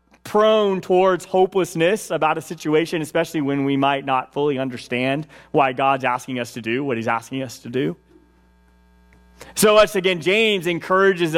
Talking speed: 160 wpm